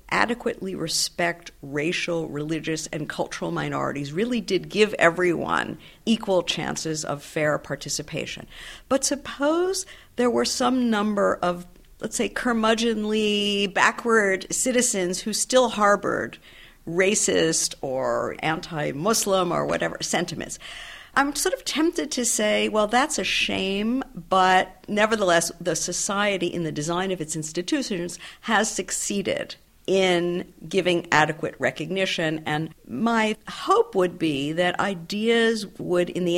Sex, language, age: female, English, 50-69